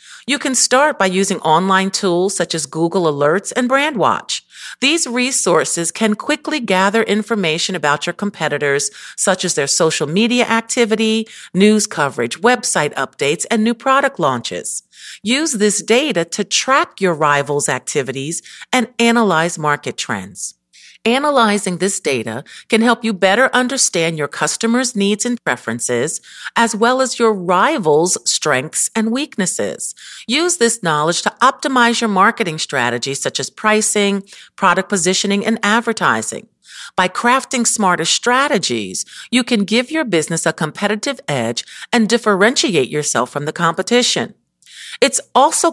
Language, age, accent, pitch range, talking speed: English, 50-69, American, 165-240 Hz, 135 wpm